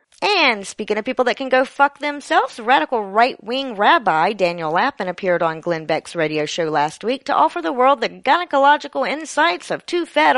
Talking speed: 185 wpm